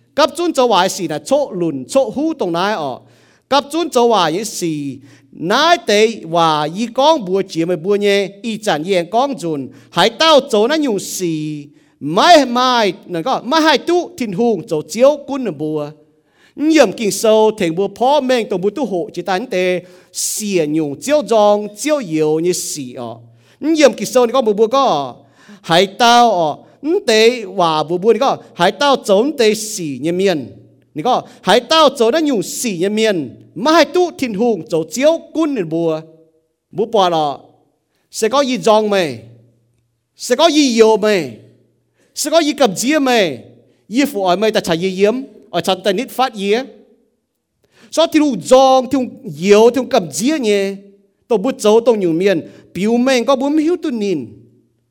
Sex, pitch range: male, 170-260 Hz